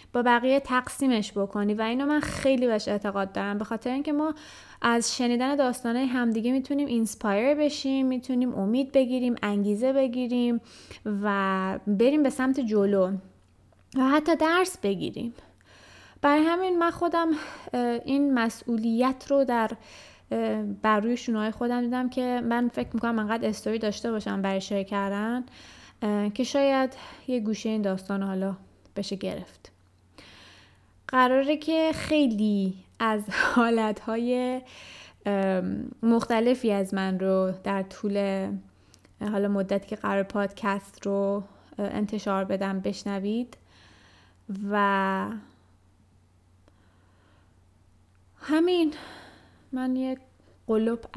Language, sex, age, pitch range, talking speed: Persian, female, 20-39, 195-250 Hz, 110 wpm